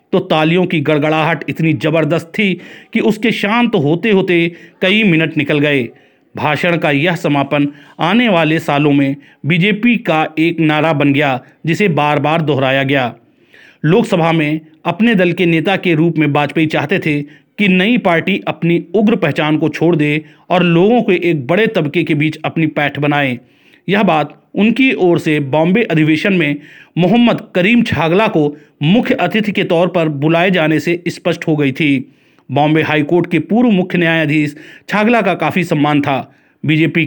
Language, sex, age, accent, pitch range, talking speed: Hindi, male, 40-59, native, 150-180 Hz, 170 wpm